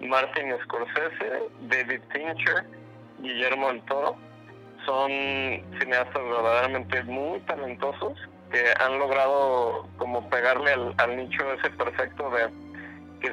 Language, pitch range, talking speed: Spanish, 120-135 Hz, 110 wpm